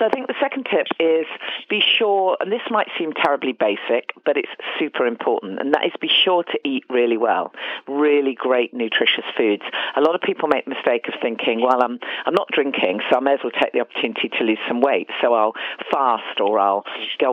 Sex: female